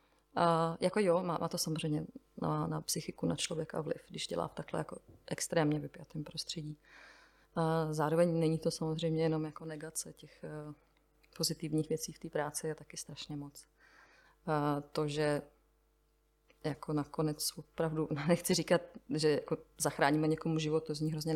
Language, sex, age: Czech, female, 30-49